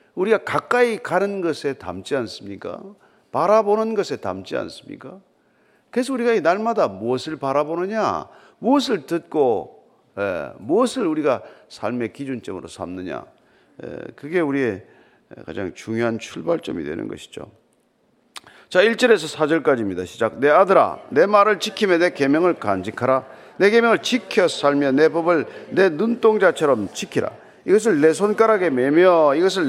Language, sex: Korean, male